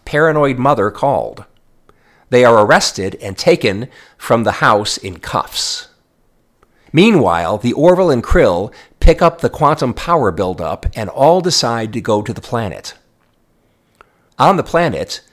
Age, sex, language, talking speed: 50-69, male, English, 135 wpm